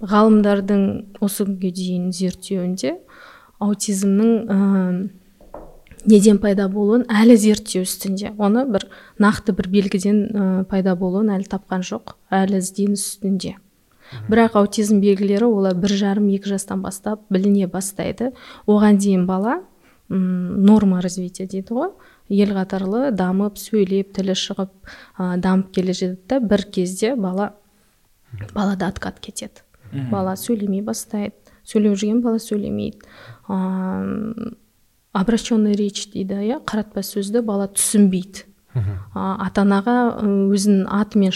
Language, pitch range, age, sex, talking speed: Russian, 190-215 Hz, 20-39, female, 90 wpm